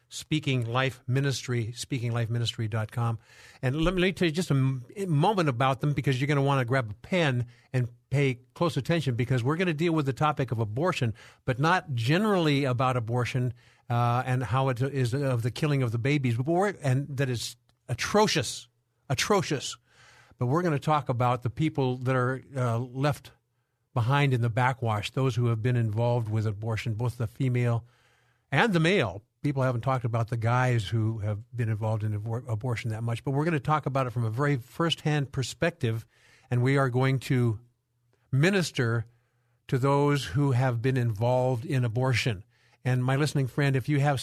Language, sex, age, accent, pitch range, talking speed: English, male, 50-69, American, 120-140 Hz, 185 wpm